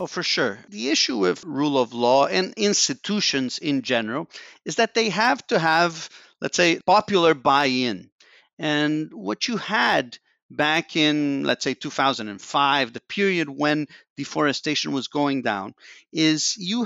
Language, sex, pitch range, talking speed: English, male, 135-175 Hz, 145 wpm